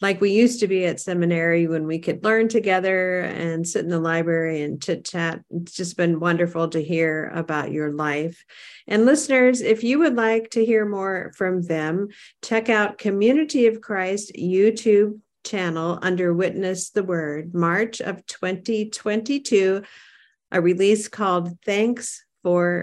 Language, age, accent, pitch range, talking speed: English, 50-69, American, 165-210 Hz, 155 wpm